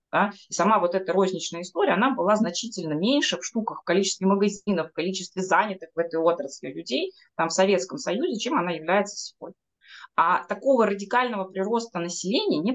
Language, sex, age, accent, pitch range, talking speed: Russian, female, 20-39, native, 180-240 Hz, 165 wpm